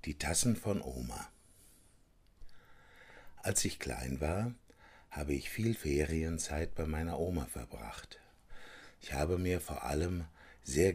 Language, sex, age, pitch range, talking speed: Slovak, male, 60-79, 75-90 Hz, 120 wpm